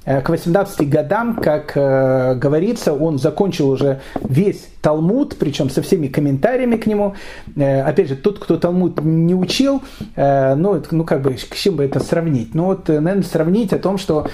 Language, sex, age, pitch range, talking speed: Russian, male, 40-59, 150-205 Hz, 180 wpm